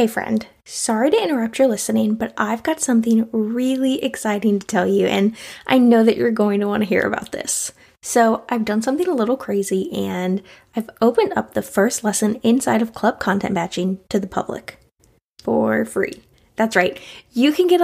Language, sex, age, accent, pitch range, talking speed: English, female, 10-29, American, 205-255 Hz, 190 wpm